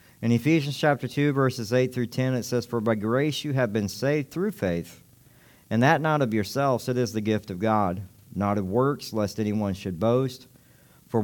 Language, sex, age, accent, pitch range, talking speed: English, male, 50-69, American, 115-145 Hz, 205 wpm